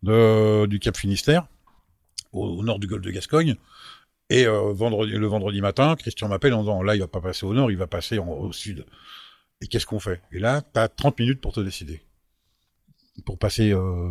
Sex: male